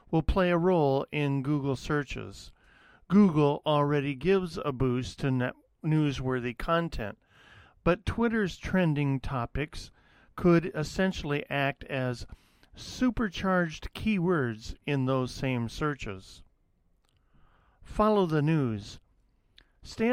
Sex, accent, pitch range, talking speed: male, American, 125-165 Hz, 100 wpm